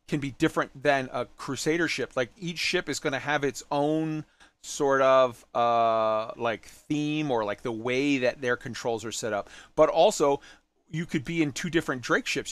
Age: 30-49